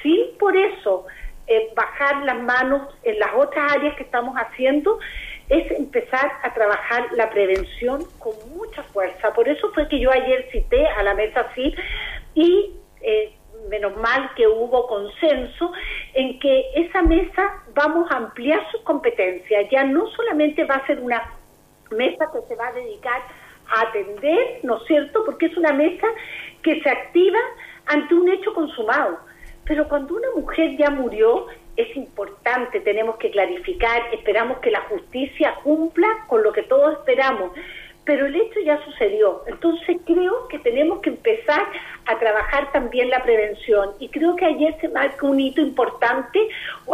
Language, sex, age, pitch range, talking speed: Spanish, female, 50-69, 245-360 Hz, 160 wpm